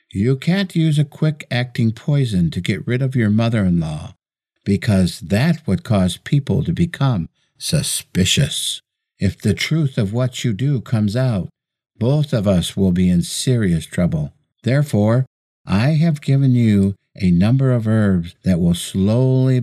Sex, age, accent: male, 60-79, American